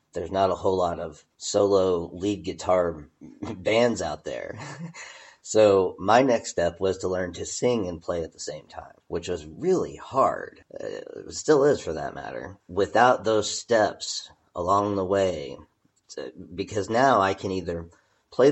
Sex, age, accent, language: male, 40-59, American, English